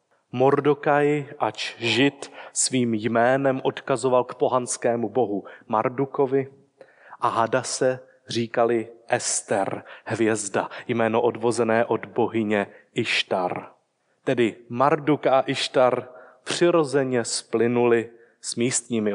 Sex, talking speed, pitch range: male, 90 wpm, 115-150 Hz